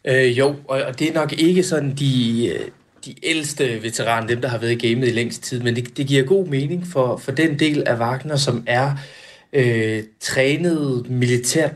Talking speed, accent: 195 wpm, native